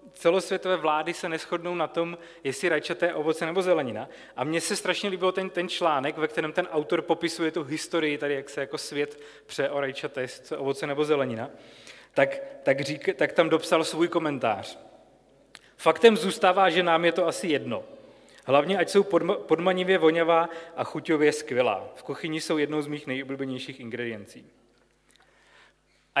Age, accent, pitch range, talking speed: 30-49, native, 150-185 Hz, 165 wpm